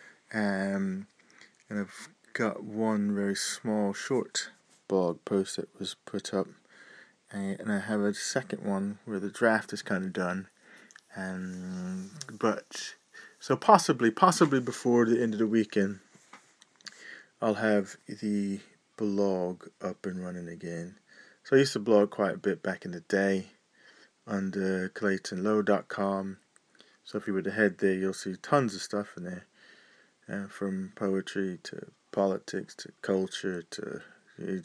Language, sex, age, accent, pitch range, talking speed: English, male, 20-39, British, 95-110 Hz, 145 wpm